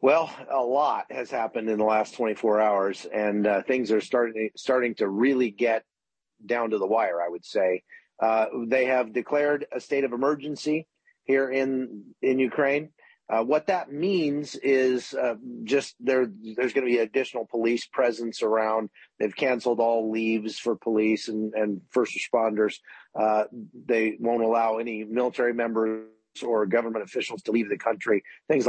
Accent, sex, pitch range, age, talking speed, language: American, male, 110-140 Hz, 40-59, 165 wpm, English